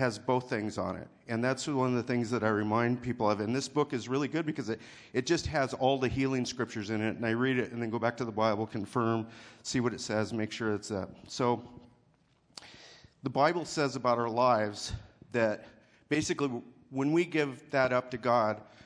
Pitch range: 110-135 Hz